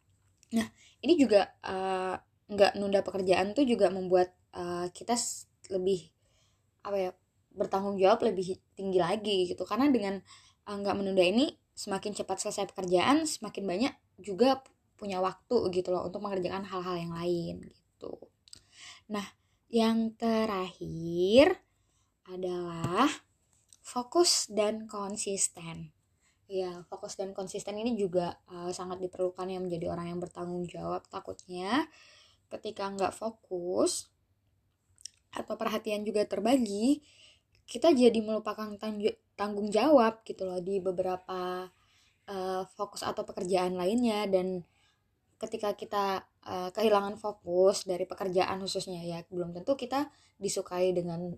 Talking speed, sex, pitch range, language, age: 120 wpm, female, 180-210 Hz, Indonesian, 20-39